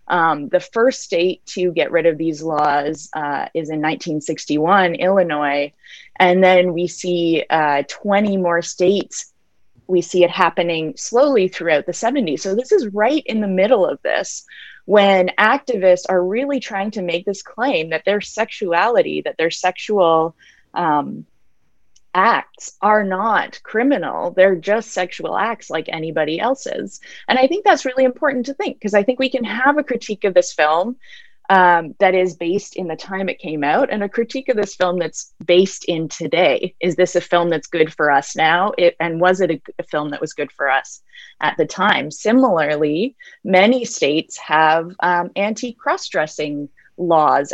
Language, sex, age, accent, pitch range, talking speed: English, female, 20-39, American, 160-225 Hz, 175 wpm